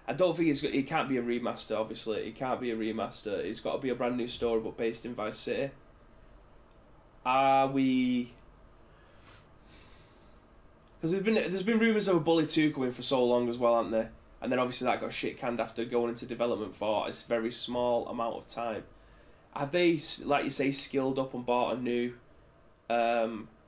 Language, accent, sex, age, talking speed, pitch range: English, British, male, 20-39, 200 wpm, 115-130 Hz